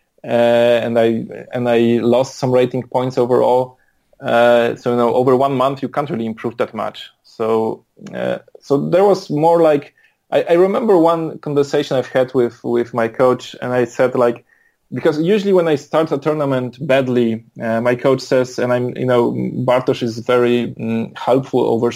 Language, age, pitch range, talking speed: English, 20-39, 120-145 Hz, 180 wpm